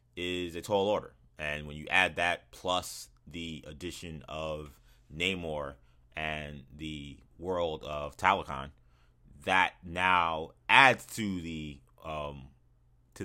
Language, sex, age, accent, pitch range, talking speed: English, male, 30-49, American, 75-110 Hz, 120 wpm